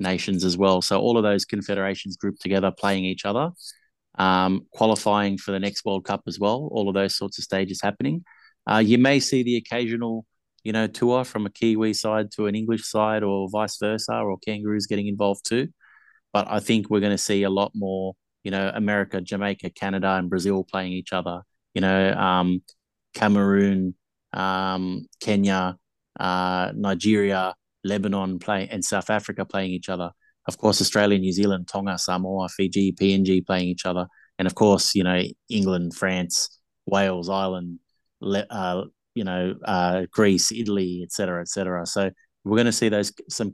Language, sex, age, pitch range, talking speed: English, male, 20-39, 95-105 Hz, 175 wpm